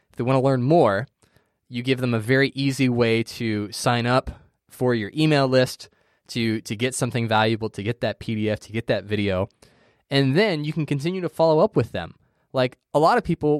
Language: English